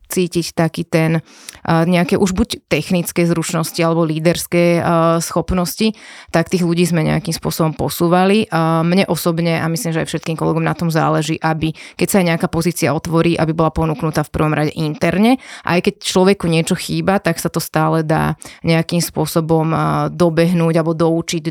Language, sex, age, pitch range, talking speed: Slovak, female, 30-49, 160-175 Hz, 160 wpm